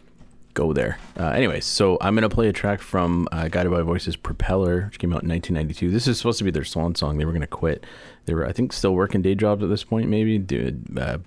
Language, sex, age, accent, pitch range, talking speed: English, male, 30-49, American, 80-100 Hz, 255 wpm